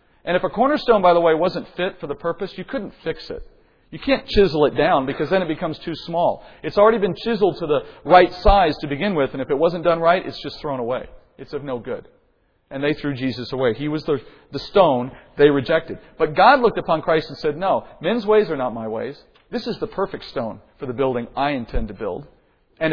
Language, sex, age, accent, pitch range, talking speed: English, male, 40-59, American, 145-220 Hz, 240 wpm